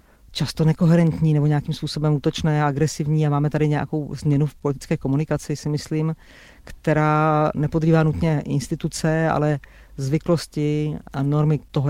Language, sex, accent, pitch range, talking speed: Czech, female, native, 140-155 Hz, 130 wpm